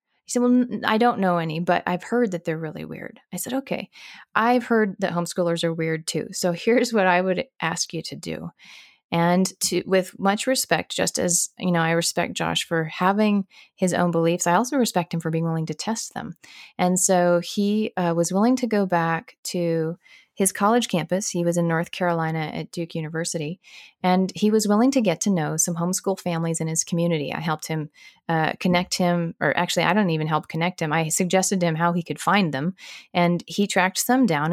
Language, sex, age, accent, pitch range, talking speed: English, female, 30-49, American, 170-210 Hz, 215 wpm